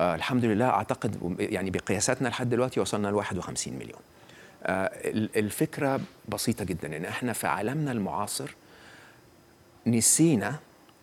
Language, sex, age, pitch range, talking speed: Arabic, male, 40-59, 105-140 Hz, 115 wpm